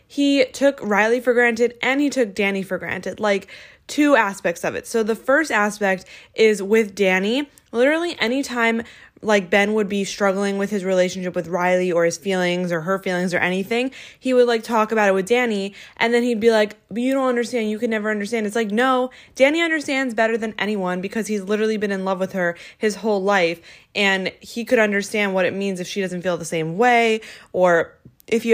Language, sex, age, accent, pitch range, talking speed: English, female, 20-39, American, 185-235 Hz, 210 wpm